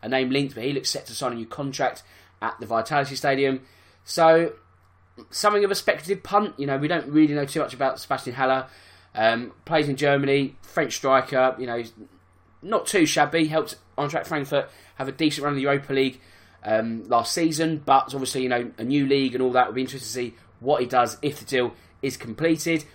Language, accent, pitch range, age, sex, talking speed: English, British, 120-155 Hz, 20-39, male, 215 wpm